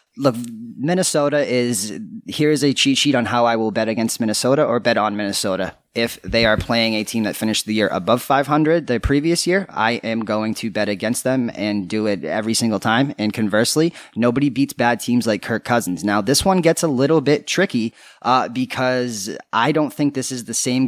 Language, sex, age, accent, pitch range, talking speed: English, male, 30-49, American, 110-135 Hz, 215 wpm